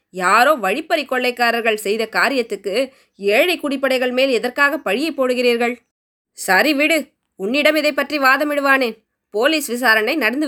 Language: Tamil